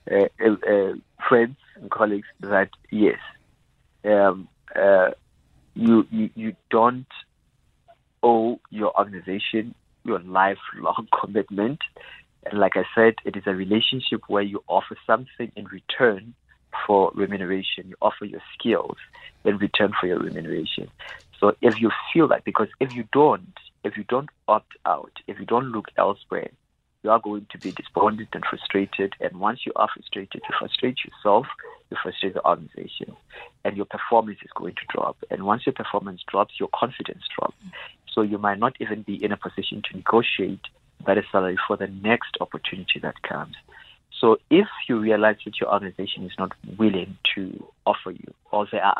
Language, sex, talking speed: English, male, 165 wpm